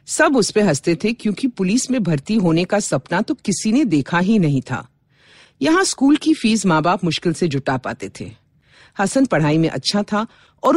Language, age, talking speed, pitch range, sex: Hindi, 50-69, 195 wpm, 150-225 Hz, female